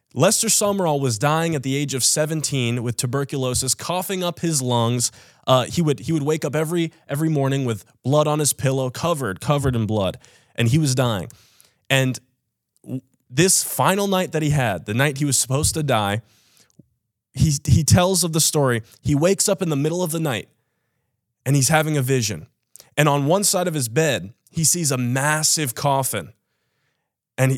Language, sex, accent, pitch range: English, male, American, 120-155 Hz